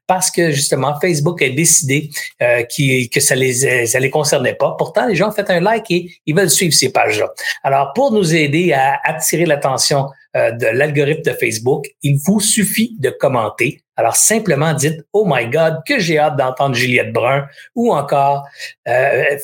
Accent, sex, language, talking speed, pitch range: Canadian, male, French, 195 wpm, 135-180 Hz